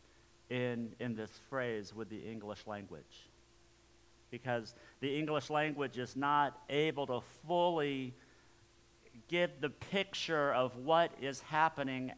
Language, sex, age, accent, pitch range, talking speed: English, male, 50-69, American, 115-175 Hz, 120 wpm